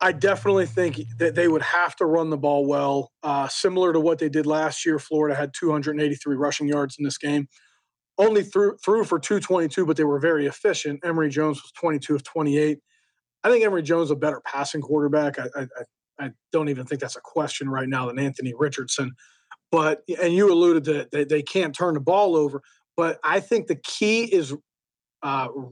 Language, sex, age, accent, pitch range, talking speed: English, male, 30-49, American, 145-180 Hz, 205 wpm